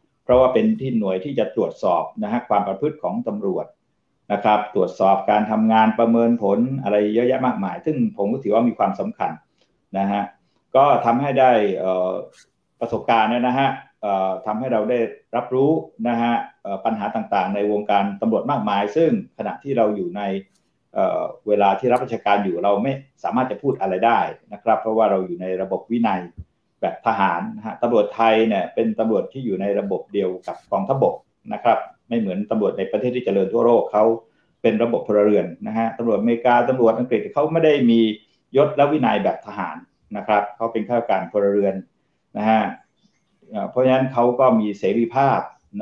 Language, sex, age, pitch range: Thai, male, 60-79, 100-125 Hz